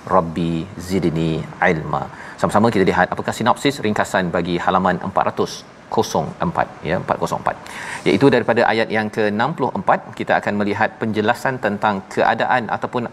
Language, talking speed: Malayalam, 120 wpm